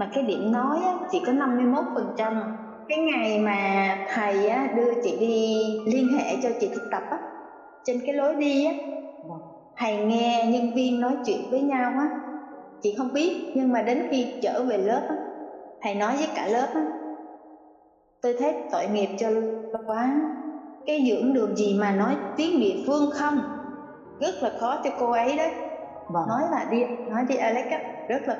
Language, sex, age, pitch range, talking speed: Vietnamese, female, 20-39, 210-280 Hz, 165 wpm